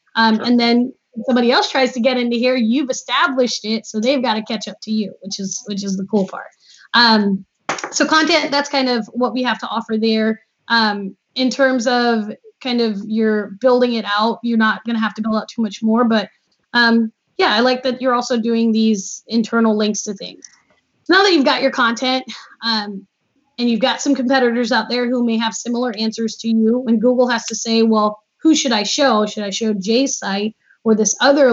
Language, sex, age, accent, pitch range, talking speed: English, female, 10-29, American, 210-250 Hz, 215 wpm